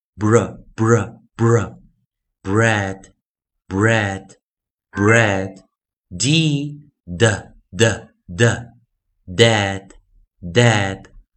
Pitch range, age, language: 95-120 Hz, 50-69, Chinese